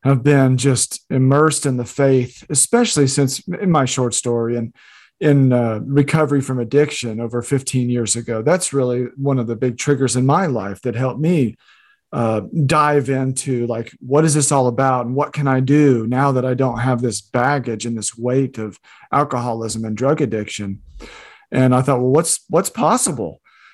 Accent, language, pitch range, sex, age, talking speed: American, English, 125-155 Hz, male, 40-59, 180 wpm